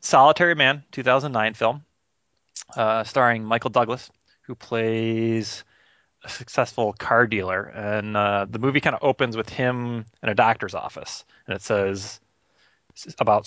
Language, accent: English, American